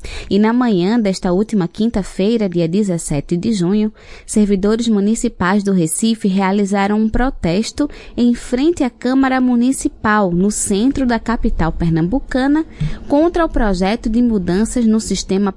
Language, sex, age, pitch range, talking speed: Portuguese, female, 20-39, 190-240 Hz, 130 wpm